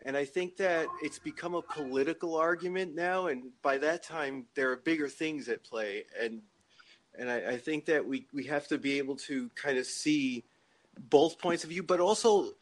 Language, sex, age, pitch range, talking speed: English, male, 30-49, 120-155 Hz, 200 wpm